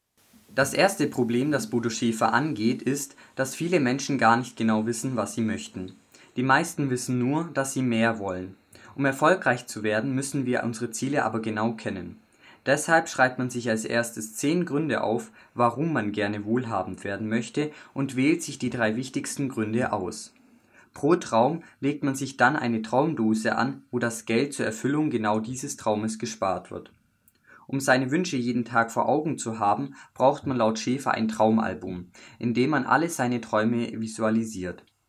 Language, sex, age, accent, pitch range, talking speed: German, male, 20-39, German, 110-135 Hz, 175 wpm